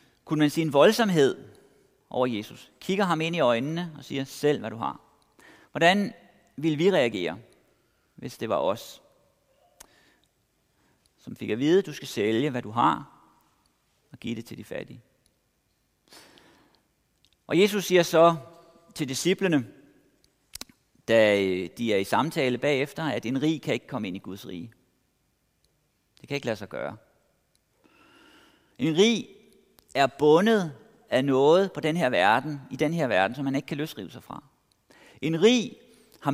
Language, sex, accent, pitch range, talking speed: Danish, male, native, 125-170 Hz, 155 wpm